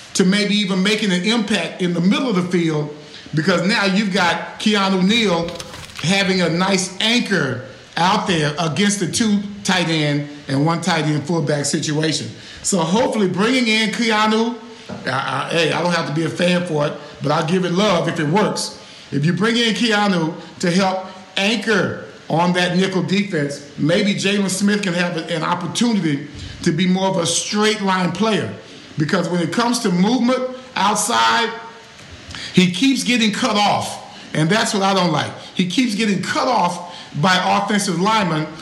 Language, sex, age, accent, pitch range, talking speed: English, male, 50-69, American, 165-210 Hz, 170 wpm